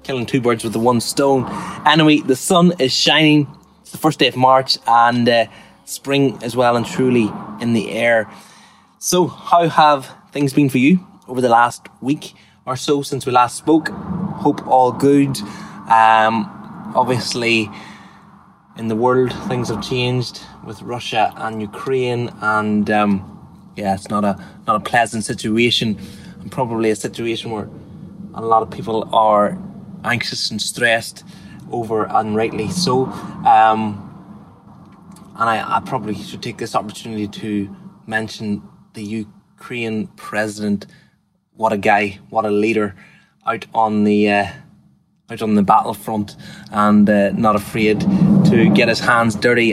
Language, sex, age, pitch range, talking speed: English, male, 20-39, 110-145 Hz, 150 wpm